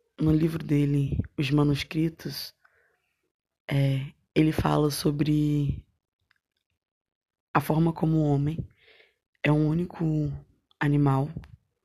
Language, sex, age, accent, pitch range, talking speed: Portuguese, female, 20-39, Brazilian, 145-175 Hz, 85 wpm